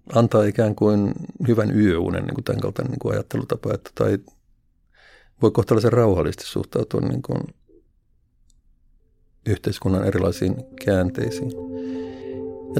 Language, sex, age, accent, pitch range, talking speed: Finnish, male, 50-69, native, 95-125 Hz, 95 wpm